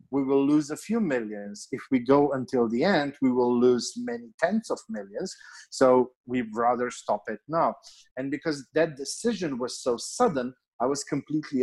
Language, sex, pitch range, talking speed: English, male, 125-165 Hz, 180 wpm